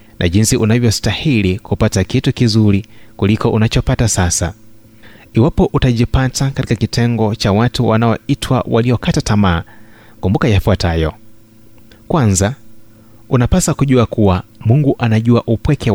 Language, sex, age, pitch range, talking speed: Swahili, male, 30-49, 105-120 Hz, 100 wpm